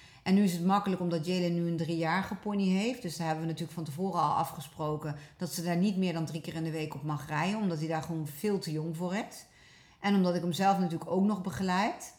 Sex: female